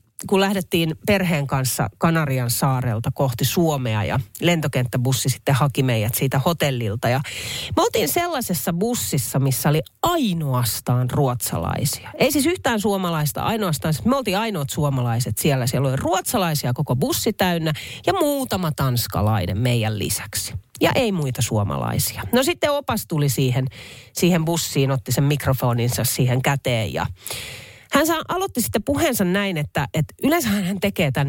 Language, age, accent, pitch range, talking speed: Finnish, 40-59, native, 125-195 Hz, 140 wpm